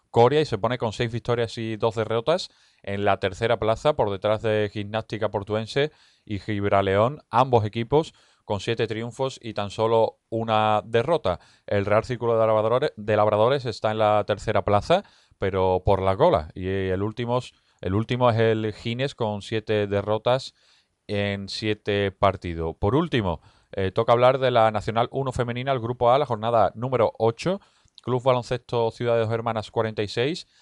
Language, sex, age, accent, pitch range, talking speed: Spanish, male, 30-49, Spanish, 105-120 Hz, 160 wpm